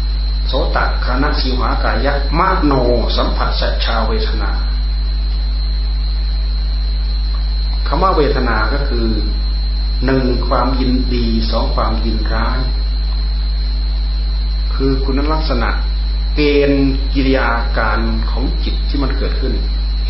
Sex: male